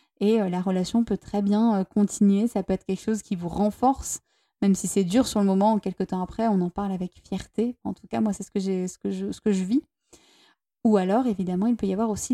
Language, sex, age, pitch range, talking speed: French, female, 20-39, 195-230 Hz, 260 wpm